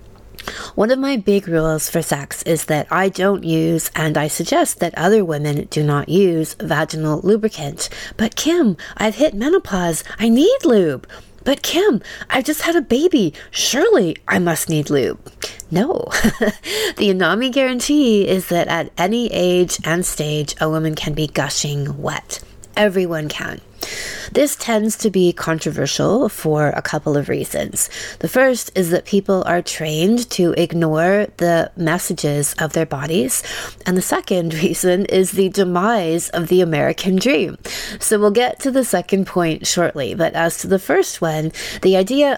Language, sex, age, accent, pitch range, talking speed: English, female, 30-49, American, 155-210 Hz, 160 wpm